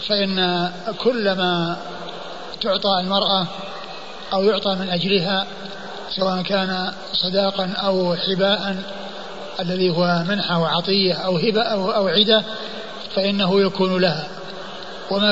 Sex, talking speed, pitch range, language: male, 100 wpm, 185-205 Hz, Arabic